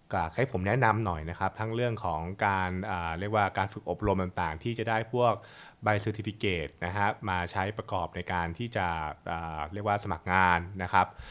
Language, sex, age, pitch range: Thai, male, 20-39, 90-115 Hz